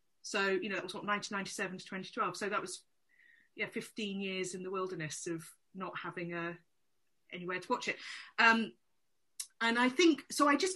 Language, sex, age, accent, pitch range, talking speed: English, female, 30-49, British, 180-245 Hz, 185 wpm